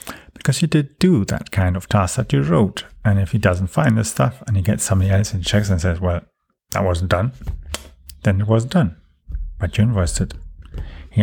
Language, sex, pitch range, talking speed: English, male, 90-120 Hz, 205 wpm